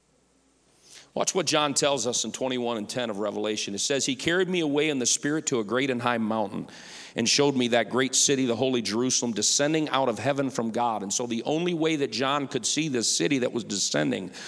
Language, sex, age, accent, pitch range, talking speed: English, male, 40-59, American, 130-170 Hz, 230 wpm